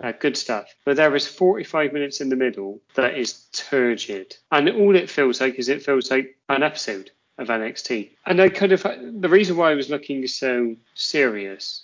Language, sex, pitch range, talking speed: English, male, 120-145 Hz, 200 wpm